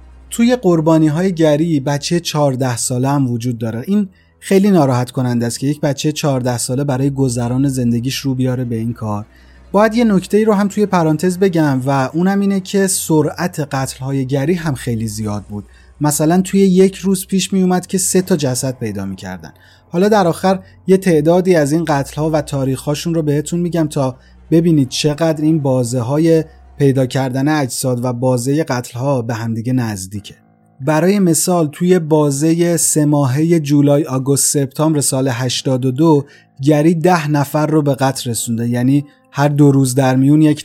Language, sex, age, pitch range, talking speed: Persian, male, 30-49, 130-160 Hz, 170 wpm